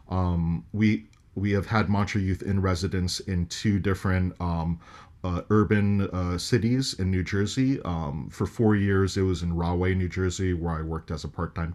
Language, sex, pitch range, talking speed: English, male, 85-105 Hz, 185 wpm